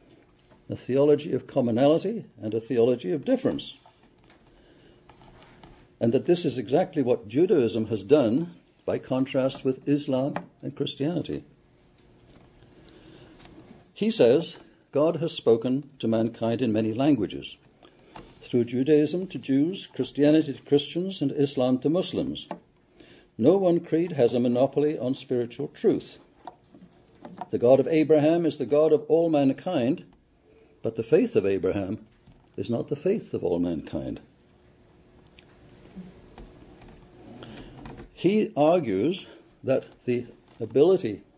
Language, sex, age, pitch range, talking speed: English, male, 60-79, 120-155 Hz, 115 wpm